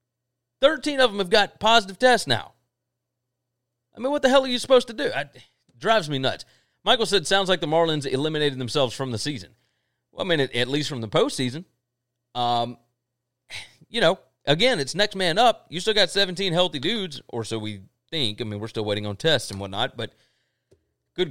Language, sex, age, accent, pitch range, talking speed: English, male, 30-49, American, 125-175 Hz, 195 wpm